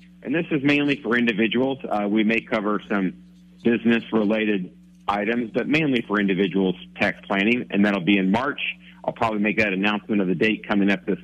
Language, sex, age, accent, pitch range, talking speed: English, male, 50-69, American, 105-160 Hz, 185 wpm